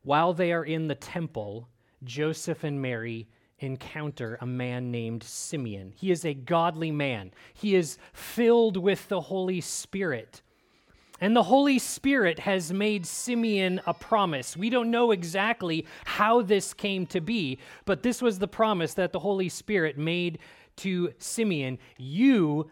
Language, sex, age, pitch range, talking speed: English, male, 30-49, 135-200 Hz, 150 wpm